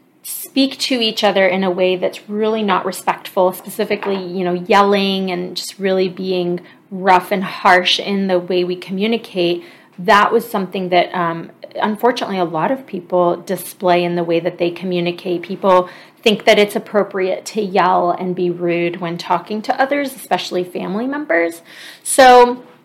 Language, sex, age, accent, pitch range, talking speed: English, female, 30-49, American, 180-220 Hz, 165 wpm